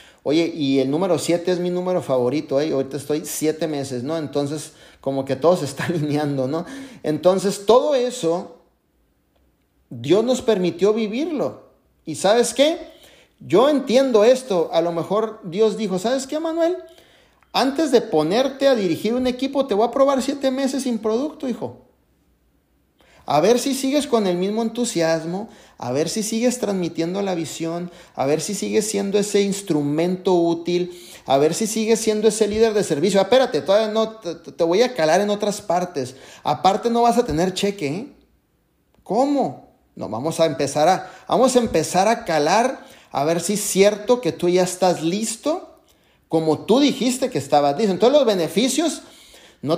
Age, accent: 40-59, Mexican